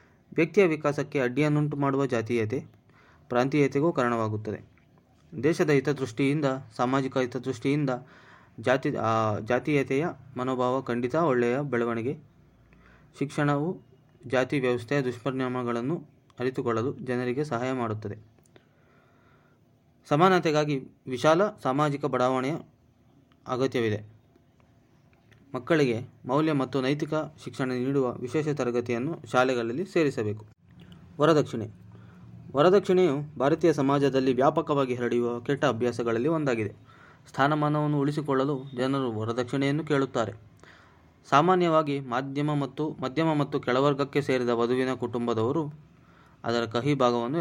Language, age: Kannada, 20-39